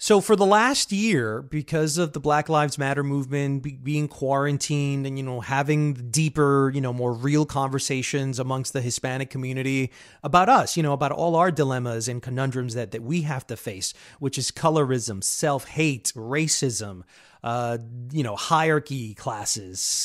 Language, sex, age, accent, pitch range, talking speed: English, male, 30-49, American, 135-220 Hz, 160 wpm